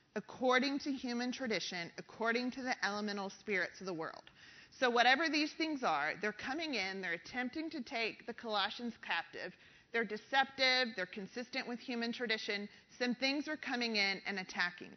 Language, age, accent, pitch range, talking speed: English, 30-49, American, 210-255 Hz, 165 wpm